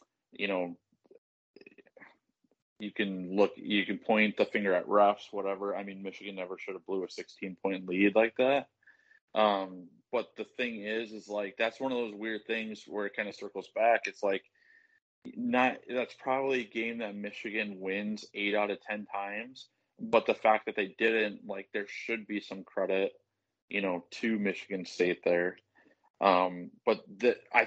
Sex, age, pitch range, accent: male, 20-39, 100-125 Hz, American